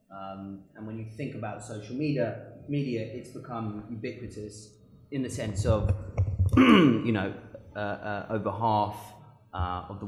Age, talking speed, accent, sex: 30-49, 150 wpm, British, male